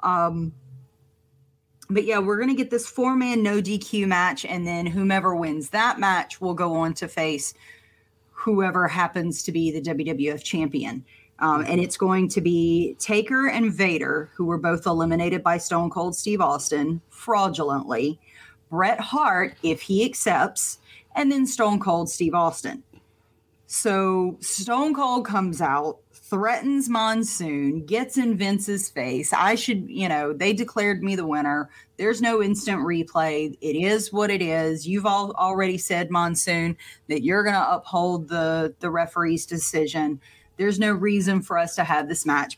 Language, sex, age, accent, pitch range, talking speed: English, female, 30-49, American, 160-215 Hz, 160 wpm